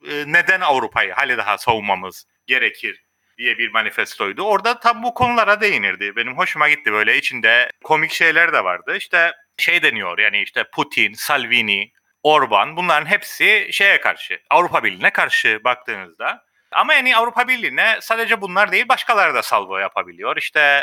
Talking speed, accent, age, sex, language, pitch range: 145 wpm, native, 30-49, male, Turkish, 135-215 Hz